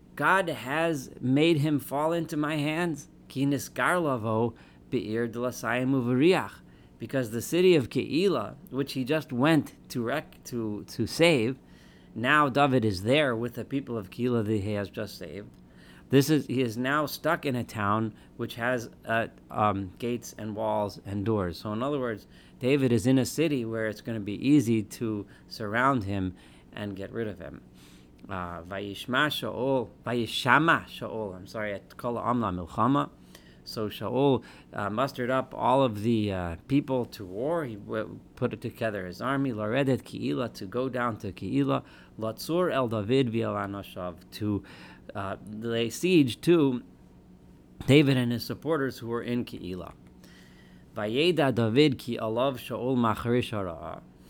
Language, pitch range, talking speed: English, 100-130 Hz, 150 wpm